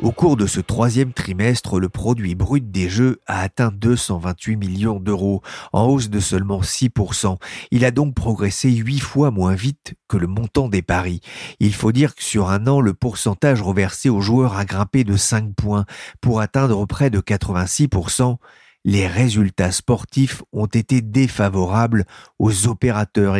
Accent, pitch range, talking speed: French, 95-125 Hz, 165 wpm